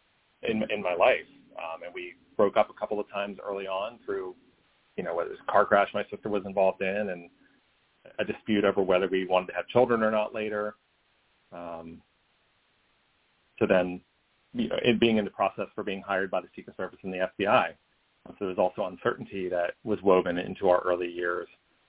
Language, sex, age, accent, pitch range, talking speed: English, male, 30-49, American, 90-110 Hz, 205 wpm